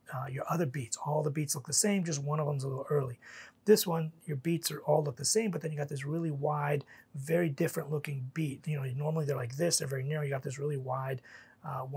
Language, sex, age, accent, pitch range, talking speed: English, male, 30-49, American, 140-170 Hz, 260 wpm